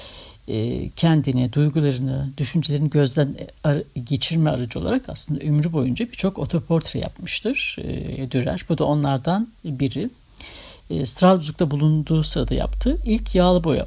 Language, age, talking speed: Turkish, 60-79, 115 wpm